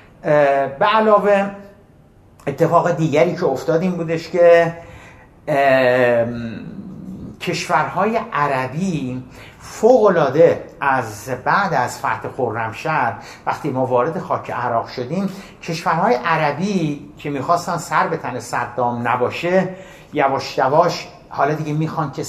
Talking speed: 100 wpm